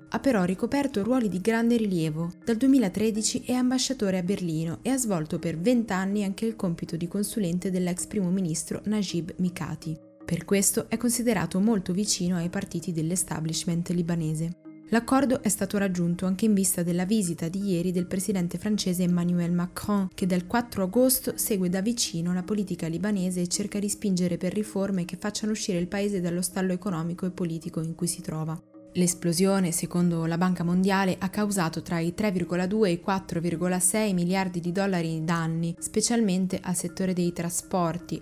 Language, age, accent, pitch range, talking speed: Italian, 20-39, native, 170-200 Hz, 170 wpm